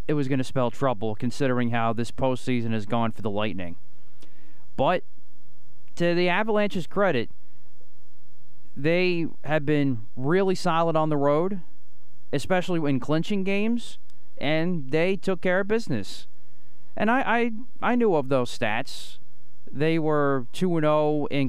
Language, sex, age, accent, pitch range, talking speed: English, male, 30-49, American, 125-160 Hz, 140 wpm